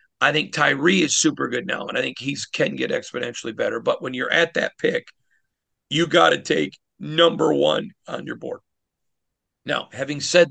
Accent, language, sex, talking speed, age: American, English, male, 190 wpm, 50-69